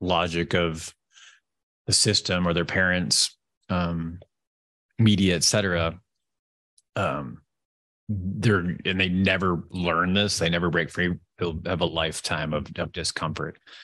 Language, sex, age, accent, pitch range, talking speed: English, male, 30-49, American, 85-105 Hz, 120 wpm